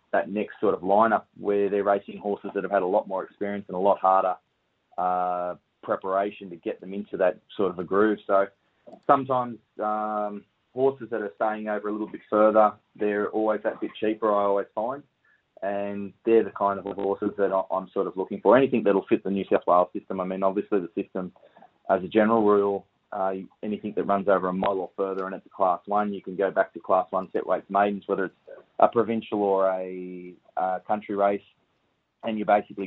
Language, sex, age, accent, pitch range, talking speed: English, male, 20-39, Australian, 95-105 Hz, 210 wpm